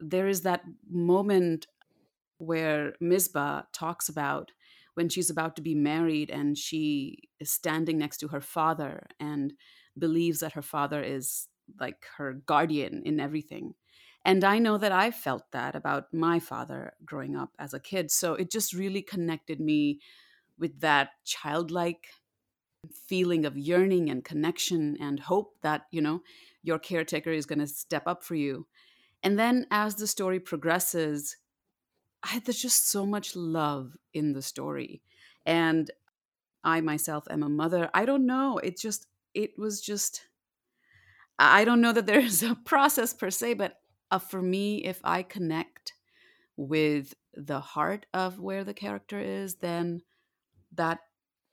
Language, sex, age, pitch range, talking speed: English, female, 30-49, 150-190 Hz, 155 wpm